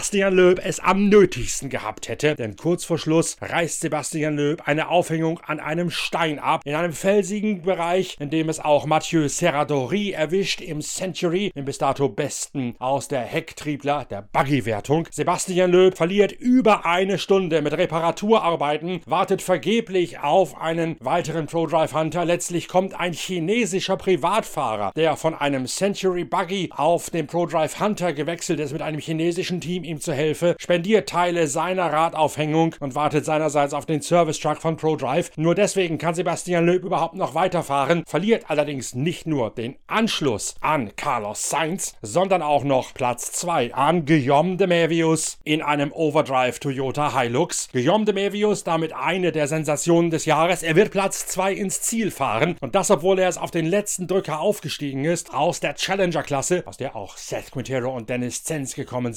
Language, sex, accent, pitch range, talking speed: German, male, German, 150-180 Hz, 165 wpm